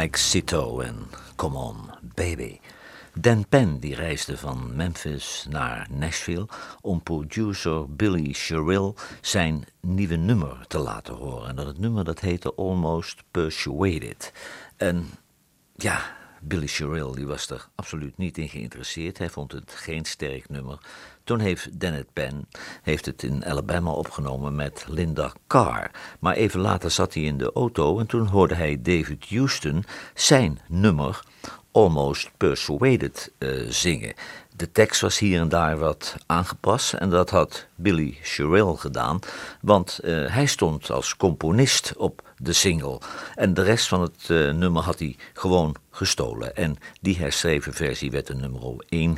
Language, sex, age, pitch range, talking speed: Dutch, male, 50-69, 70-95 Hz, 150 wpm